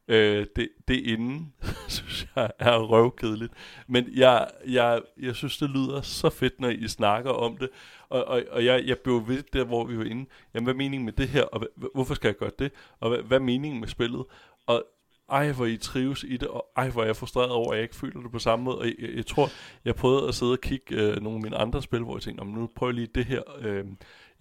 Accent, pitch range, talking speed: native, 110-125 Hz, 250 wpm